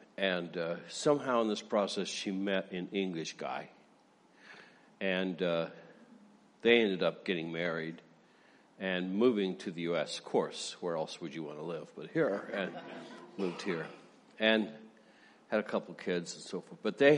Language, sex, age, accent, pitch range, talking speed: English, male, 60-79, American, 95-125 Hz, 170 wpm